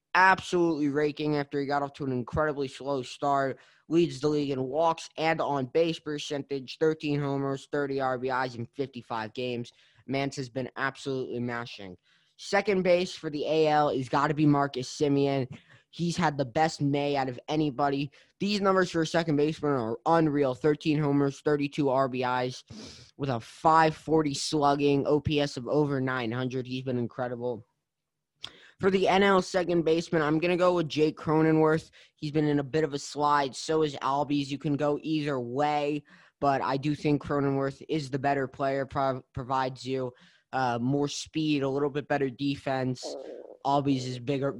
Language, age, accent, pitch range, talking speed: English, 20-39, American, 135-160 Hz, 165 wpm